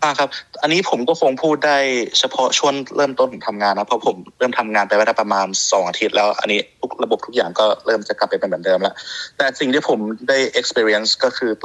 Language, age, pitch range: Thai, 20-39, 100-120 Hz